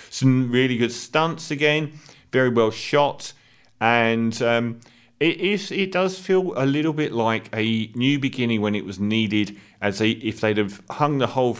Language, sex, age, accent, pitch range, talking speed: English, male, 40-59, British, 100-130 Hz, 170 wpm